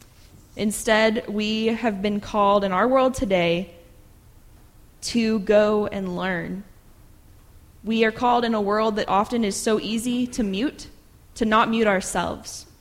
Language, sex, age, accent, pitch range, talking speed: English, female, 20-39, American, 190-230 Hz, 140 wpm